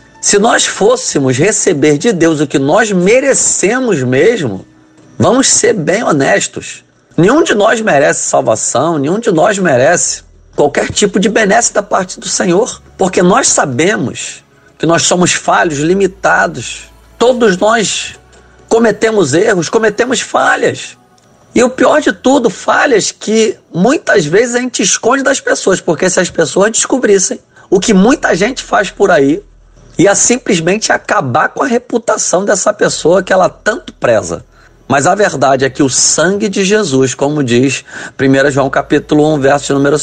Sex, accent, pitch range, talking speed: male, Brazilian, 155-240 Hz, 150 wpm